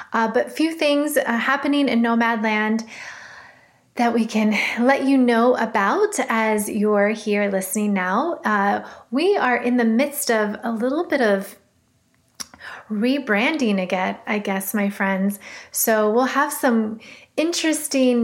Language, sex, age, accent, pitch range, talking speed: English, female, 30-49, American, 210-245 Hz, 140 wpm